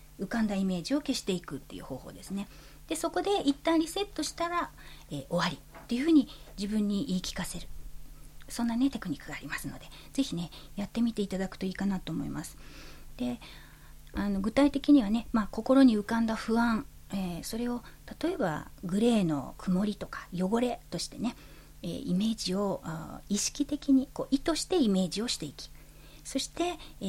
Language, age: Japanese, 40-59